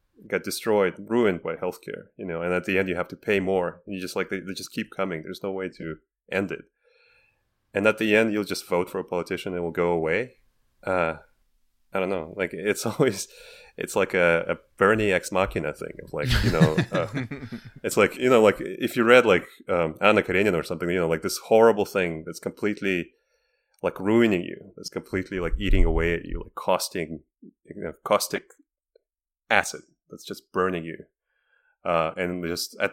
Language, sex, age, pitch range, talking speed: English, male, 30-49, 85-105 Hz, 205 wpm